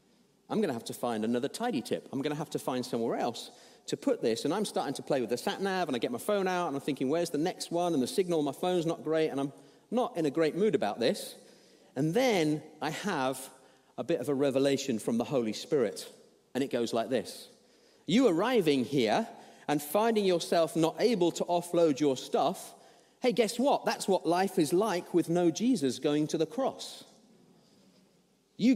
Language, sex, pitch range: English, male, 150-220 Hz